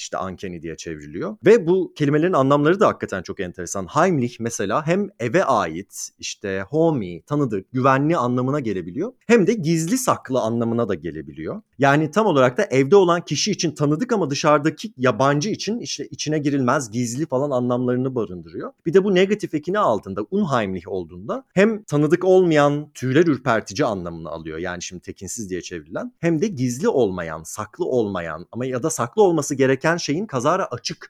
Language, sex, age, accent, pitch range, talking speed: Turkish, male, 30-49, native, 115-165 Hz, 165 wpm